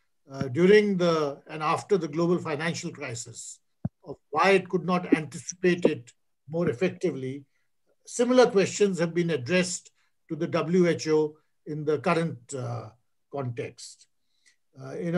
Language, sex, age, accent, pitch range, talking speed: English, male, 50-69, Indian, 145-180 Hz, 130 wpm